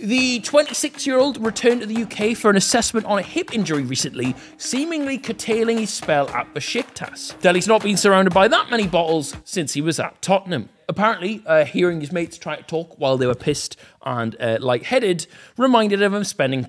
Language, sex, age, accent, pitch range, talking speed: English, male, 30-49, British, 160-240 Hz, 185 wpm